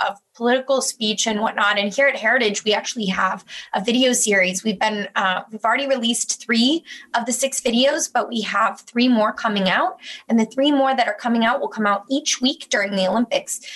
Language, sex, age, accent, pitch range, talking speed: English, female, 20-39, American, 195-245 Hz, 215 wpm